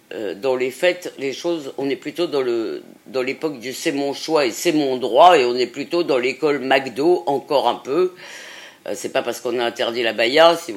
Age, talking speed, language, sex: 50-69, 230 wpm, French, female